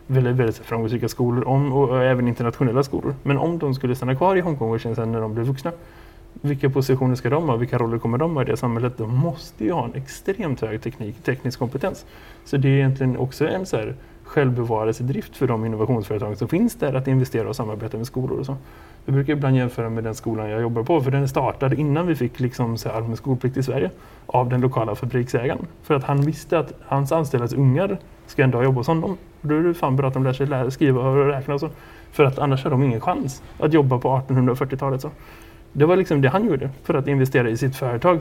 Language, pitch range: Swedish, 120-145 Hz